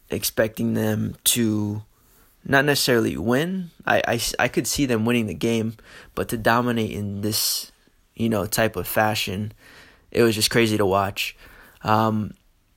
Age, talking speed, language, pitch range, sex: 20-39, 150 wpm, English, 105-115 Hz, male